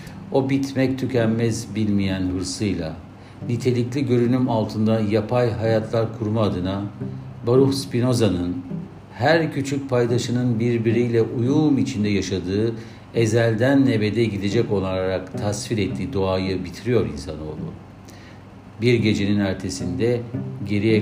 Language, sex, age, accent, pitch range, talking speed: Turkish, male, 60-79, native, 95-120 Hz, 95 wpm